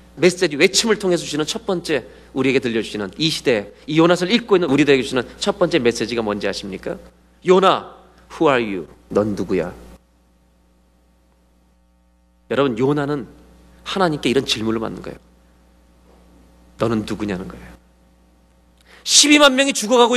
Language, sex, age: Korean, male, 40-59